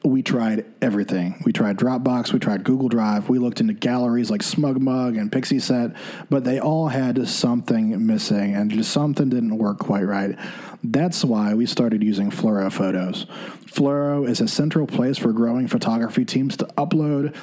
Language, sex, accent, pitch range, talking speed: English, male, American, 125-165 Hz, 175 wpm